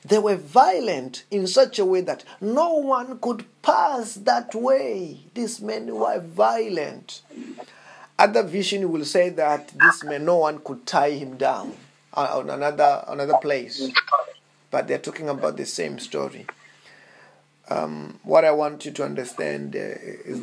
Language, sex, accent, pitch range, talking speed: English, male, South African, 135-185 Hz, 150 wpm